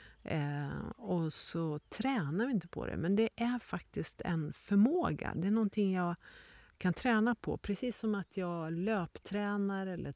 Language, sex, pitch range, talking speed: Swedish, female, 155-210 Hz, 155 wpm